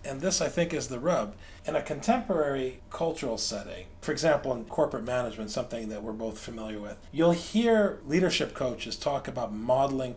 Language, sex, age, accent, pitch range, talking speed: English, male, 40-59, American, 120-180 Hz, 175 wpm